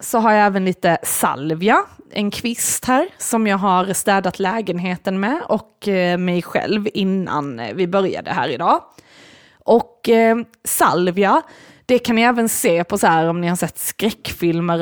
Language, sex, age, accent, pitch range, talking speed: Swedish, female, 20-39, native, 180-230 Hz, 160 wpm